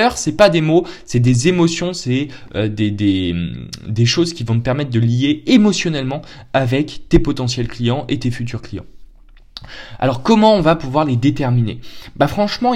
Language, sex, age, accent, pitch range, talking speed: French, male, 20-39, French, 125-170 Hz, 175 wpm